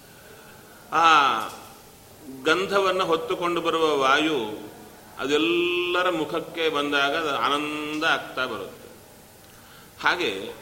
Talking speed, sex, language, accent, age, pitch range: 70 wpm, male, Kannada, native, 40-59, 155-200 Hz